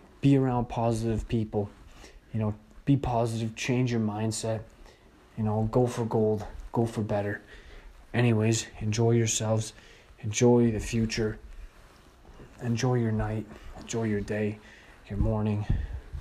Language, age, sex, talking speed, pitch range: English, 20-39, male, 120 wpm, 105-120 Hz